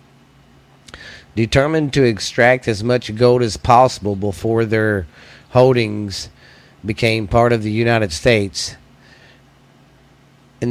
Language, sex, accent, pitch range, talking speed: English, male, American, 110-130 Hz, 100 wpm